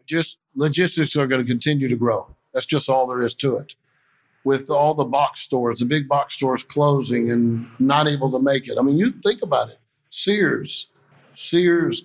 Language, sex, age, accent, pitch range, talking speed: English, male, 50-69, American, 130-150 Hz, 195 wpm